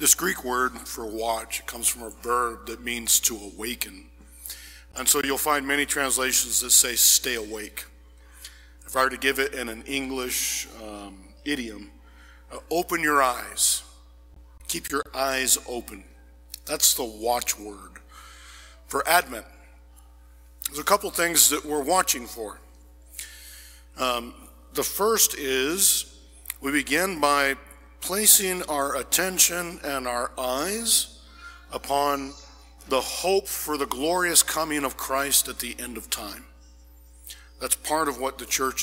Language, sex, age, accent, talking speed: English, male, 50-69, American, 140 wpm